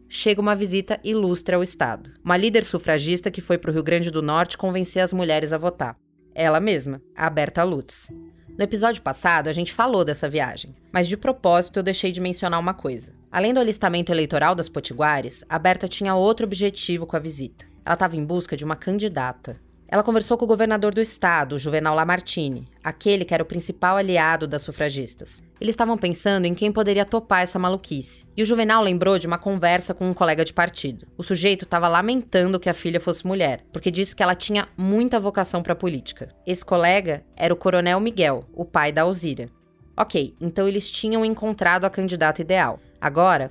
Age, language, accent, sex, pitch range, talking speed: 20-39, Portuguese, Brazilian, female, 160-195 Hz, 195 wpm